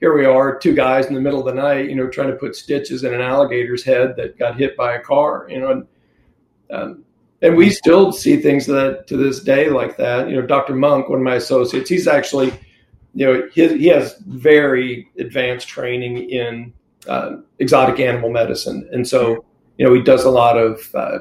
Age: 40-59